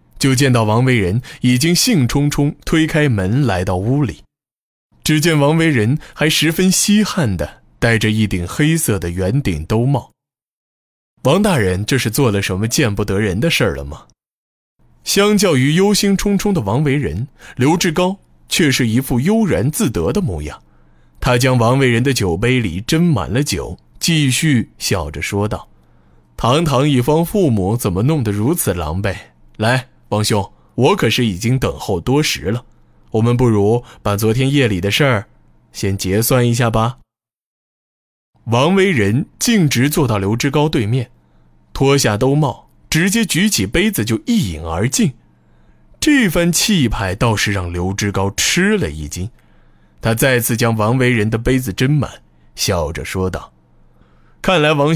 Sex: male